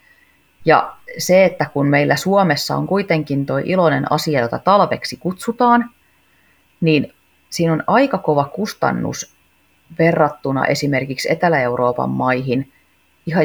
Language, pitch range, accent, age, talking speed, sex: Finnish, 125-160 Hz, native, 30-49, 110 wpm, female